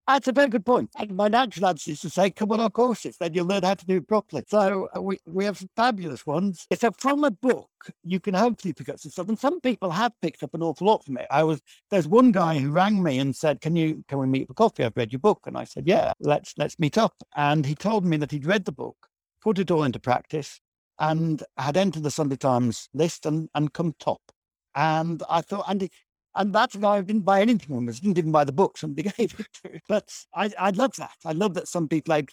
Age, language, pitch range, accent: 60-79, English, 150-205 Hz, British